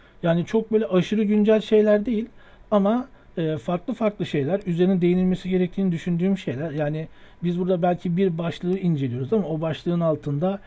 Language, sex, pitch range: Turkish, male, 155-185 Hz